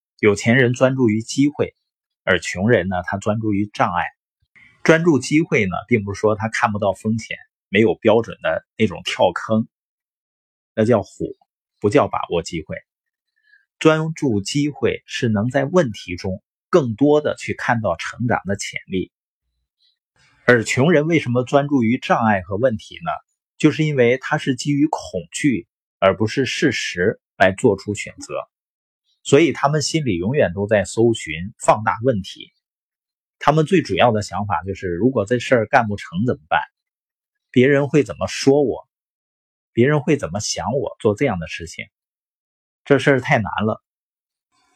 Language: Chinese